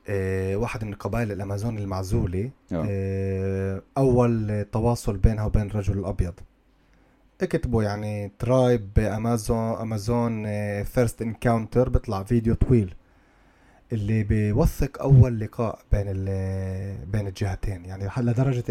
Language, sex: Arabic, male